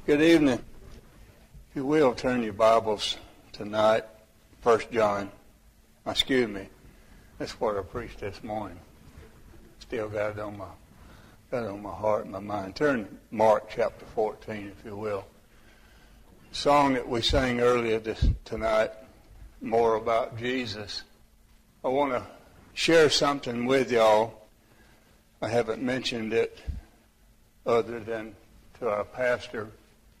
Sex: male